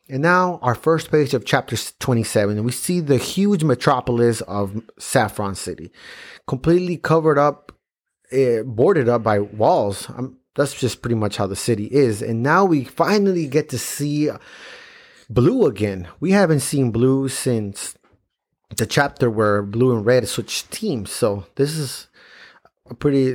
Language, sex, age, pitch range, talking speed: English, male, 30-49, 115-155 Hz, 155 wpm